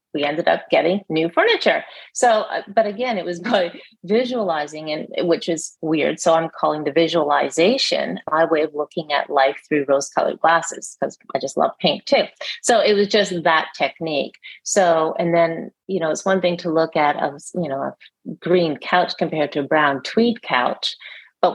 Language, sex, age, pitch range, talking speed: English, female, 30-49, 160-195 Hz, 185 wpm